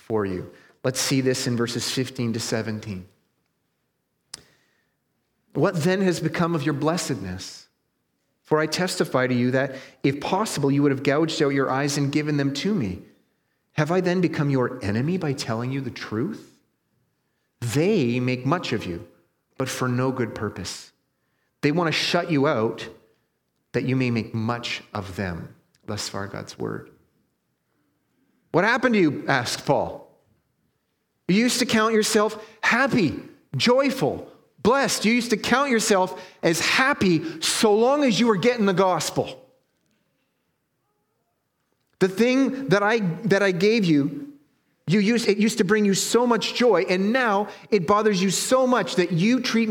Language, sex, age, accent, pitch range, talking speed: English, male, 30-49, American, 130-200 Hz, 160 wpm